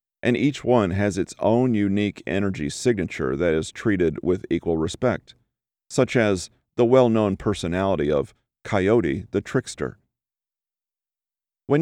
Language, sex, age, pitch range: English, male, 40-59, 95-120 Hz